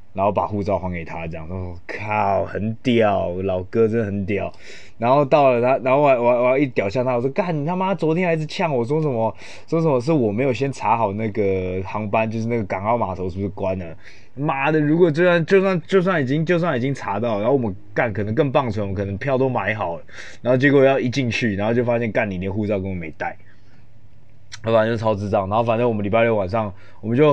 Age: 20-39